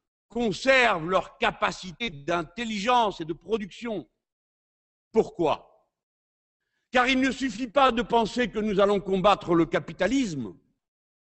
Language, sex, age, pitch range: French, male, 60-79, 185-250 Hz